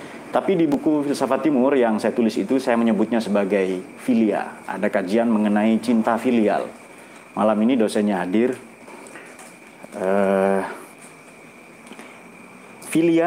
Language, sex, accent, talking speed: Indonesian, male, native, 105 wpm